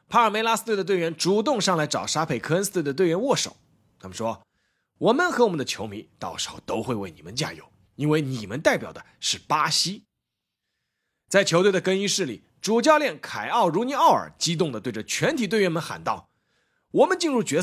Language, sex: Chinese, male